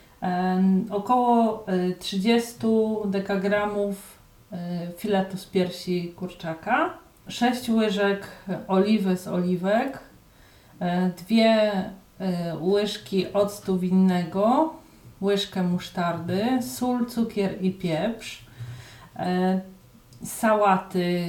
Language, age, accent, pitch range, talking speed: Polish, 40-59, native, 185-215 Hz, 65 wpm